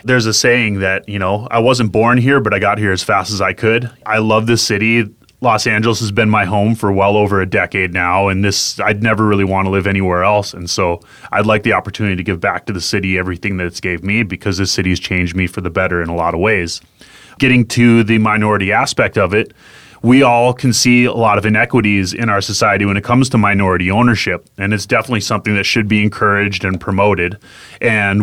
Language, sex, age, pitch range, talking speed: English, male, 30-49, 100-115 Hz, 235 wpm